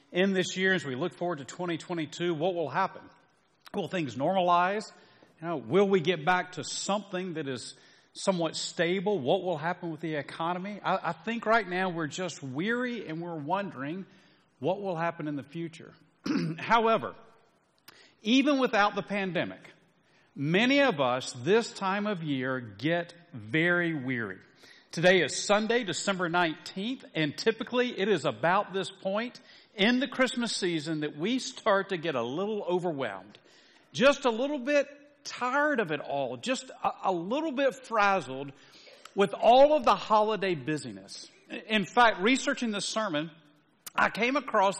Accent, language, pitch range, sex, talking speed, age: American, English, 165-230 Hz, male, 155 wpm, 40-59